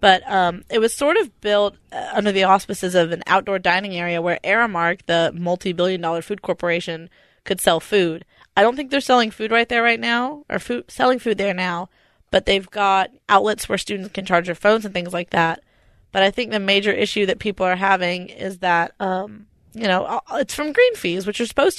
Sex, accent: female, American